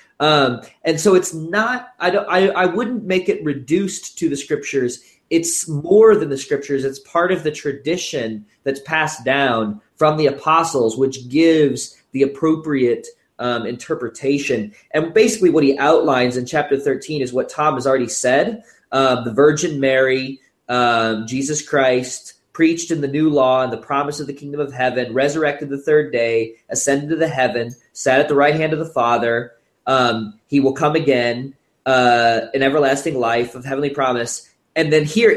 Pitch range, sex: 125-160 Hz, male